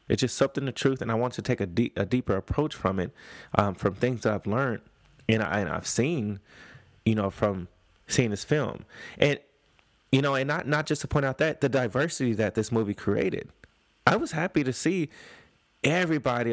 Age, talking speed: 20-39, 205 wpm